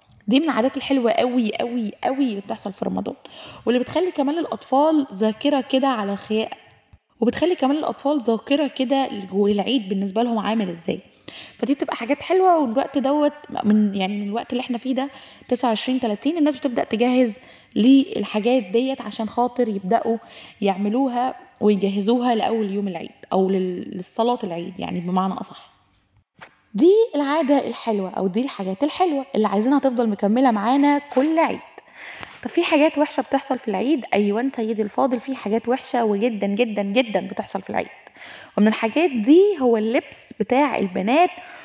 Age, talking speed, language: 20-39, 150 wpm, Arabic